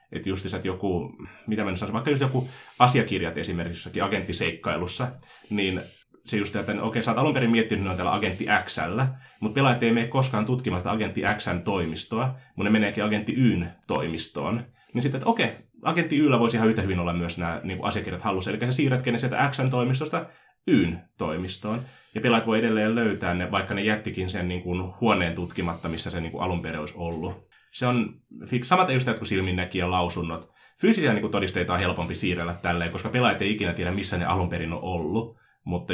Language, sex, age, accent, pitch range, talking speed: Finnish, male, 30-49, native, 90-120 Hz, 195 wpm